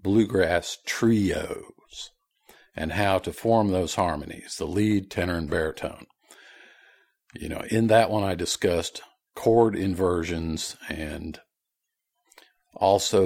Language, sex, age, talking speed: English, male, 50-69, 110 wpm